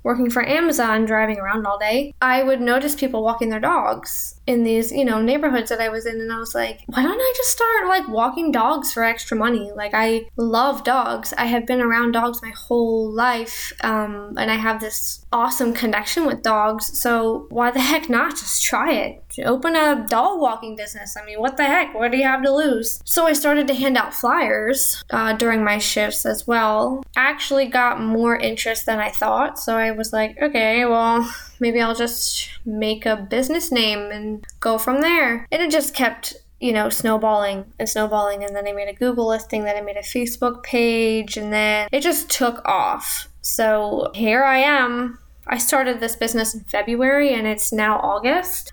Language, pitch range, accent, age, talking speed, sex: English, 220-265 Hz, American, 10-29, 200 wpm, female